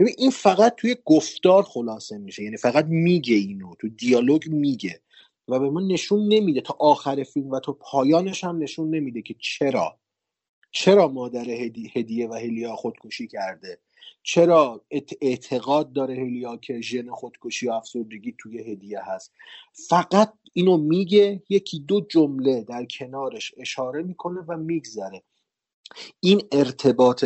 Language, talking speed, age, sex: Persian, 140 wpm, 30-49, male